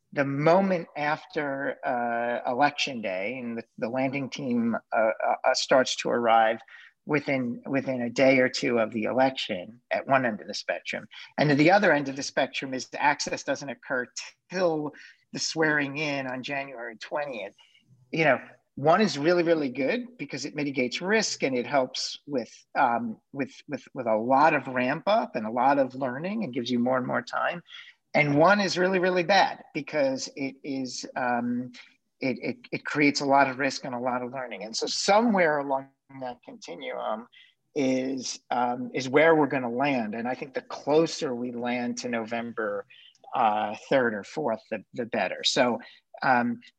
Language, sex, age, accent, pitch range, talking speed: English, male, 50-69, American, 125-155 Hz, 180 wpm